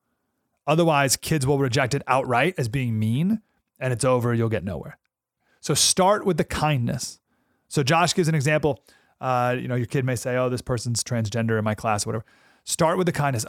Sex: male